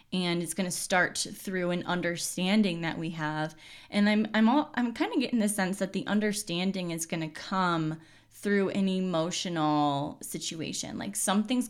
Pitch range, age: 165-215 Hz, 10-29